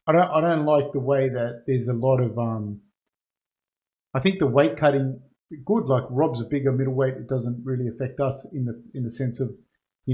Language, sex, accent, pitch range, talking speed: English, male, Australian, 125-150 Hz, 215 wpm